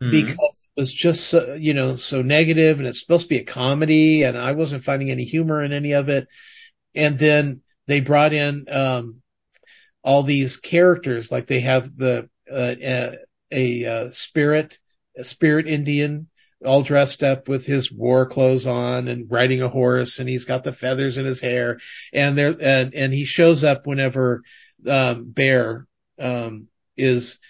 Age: 50-69